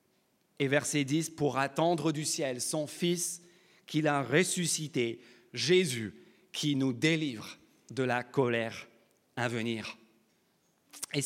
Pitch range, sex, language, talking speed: 155-215 Hz, male, French, 115 wpm